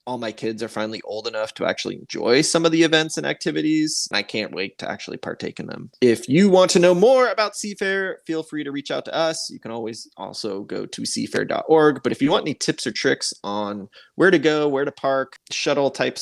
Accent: American